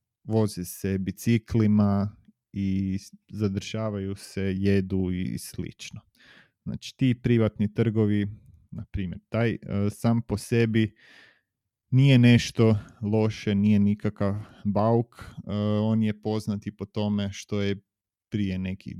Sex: male